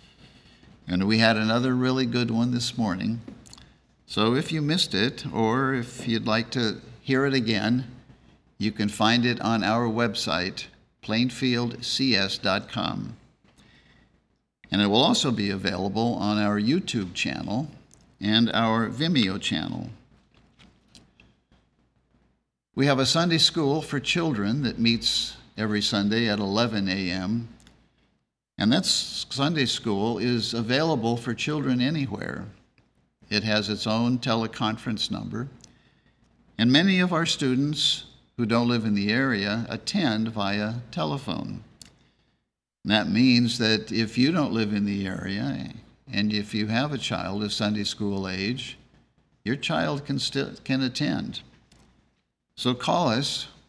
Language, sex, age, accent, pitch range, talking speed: English, male, 50-69, American, 105-130 Hz, 130 wpm